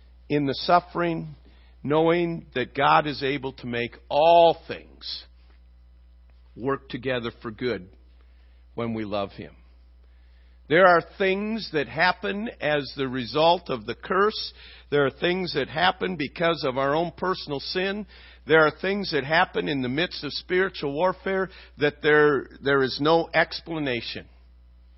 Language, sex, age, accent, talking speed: English, male, 50-69, American, 140 wpm